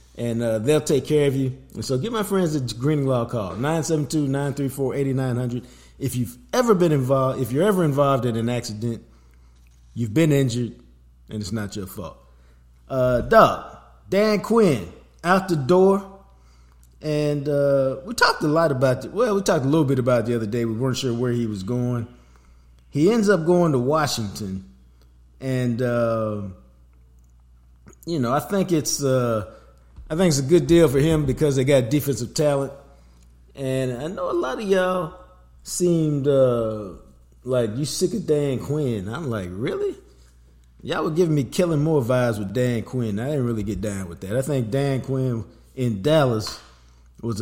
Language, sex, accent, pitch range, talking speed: English, male, American, 100-145 Hz, 175 wpm